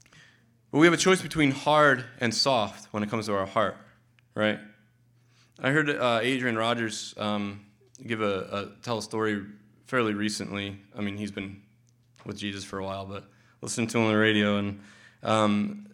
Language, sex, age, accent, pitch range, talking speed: English, male, 20-39, American, 105-120 Hz, 180 wpm